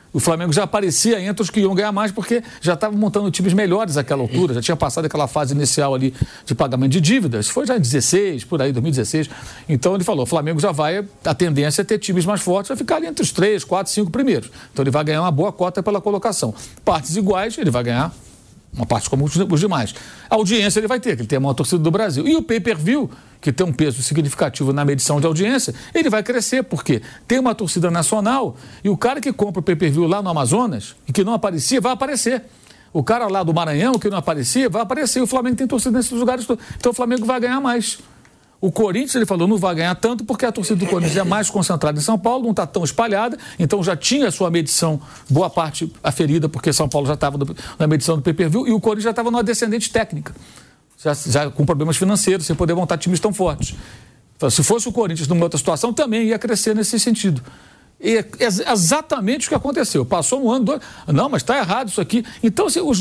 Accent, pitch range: Brazilian, 155-230 Hz